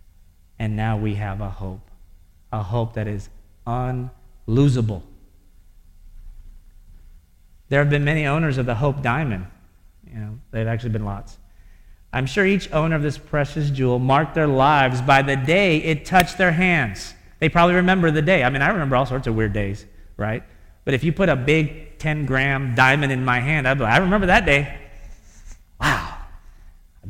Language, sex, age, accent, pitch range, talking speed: English, male, 40-59, American, 95-140 Hz, 180 wpm